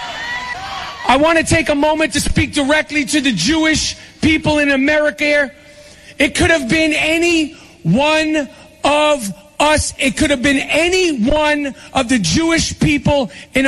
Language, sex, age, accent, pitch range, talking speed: English, male, 40-59, American, 285-315 Hz, 155 wpm